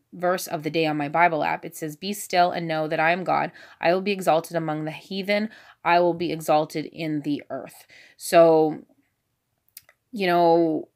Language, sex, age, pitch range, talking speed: English, female, 20-39, 155-180 Hz, 190 wpm